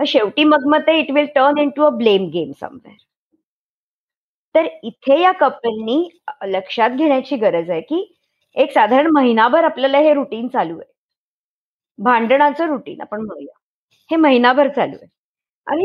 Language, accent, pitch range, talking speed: Marathi, native, 230-295 Hz, 140 wpm